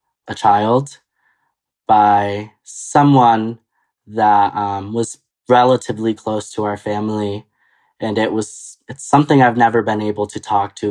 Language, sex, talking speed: English, male, 125 wpm